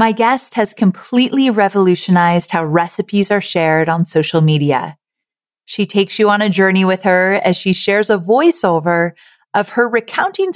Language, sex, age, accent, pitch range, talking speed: English, female, 30-49, American, 180-235 Hz, 160 wpm